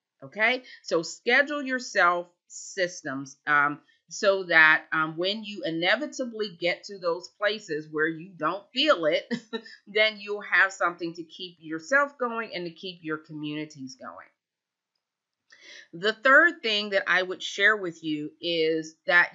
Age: 40-59